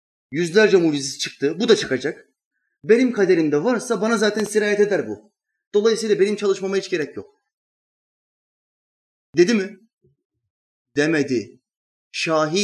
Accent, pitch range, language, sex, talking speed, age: native, 150-220 Hz, Turkish, male, 115 wpm, 30-49